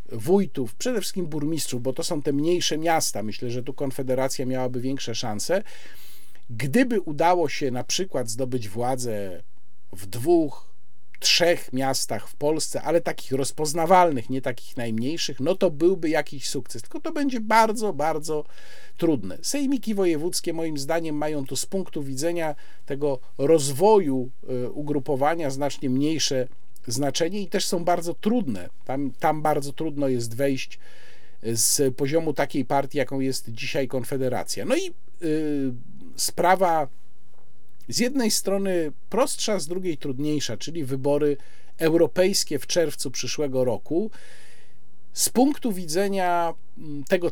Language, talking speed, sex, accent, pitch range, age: Polish, 130 wpm, male, native, 130-175 Hz, 40-59